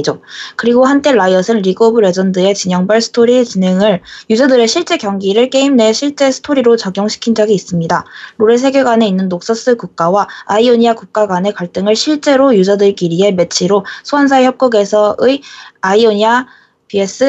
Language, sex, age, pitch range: Korean, female, 20-39, 190-245 Hz